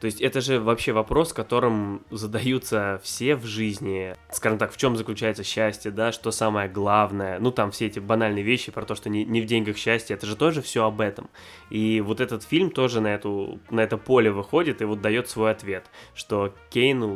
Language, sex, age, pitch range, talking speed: Russian, male, 20-39, 105-120 Hz, 205 wpm